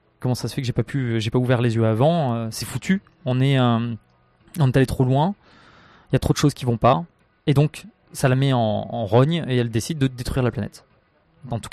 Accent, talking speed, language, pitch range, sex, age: French, 260 wpm, French, 120-140 Hz, male, 20-39